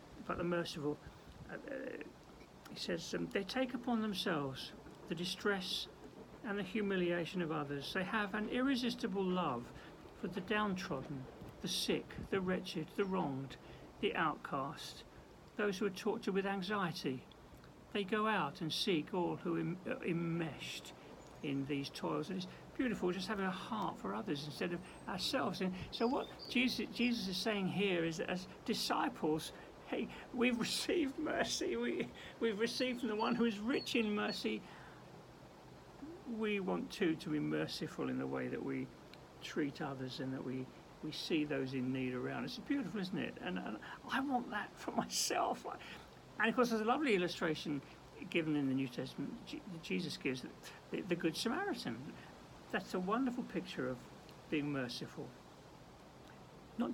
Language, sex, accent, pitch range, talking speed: English, male, British, 150-220 Hz, 160 wpm